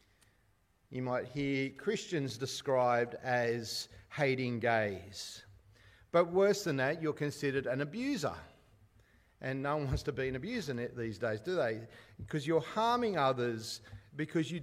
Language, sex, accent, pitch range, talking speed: English, male, Australian, 130-190 Hz, 140 wpm